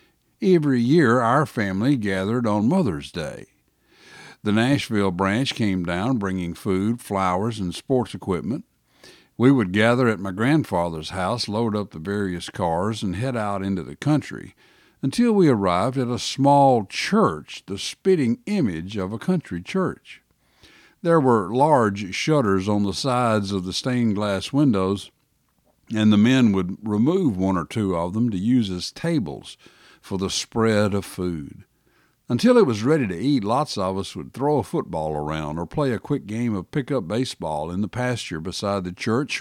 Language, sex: English, male